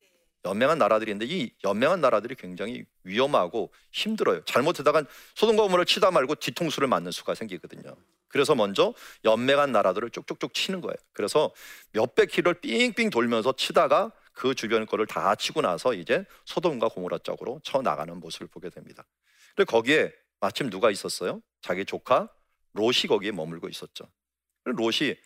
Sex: male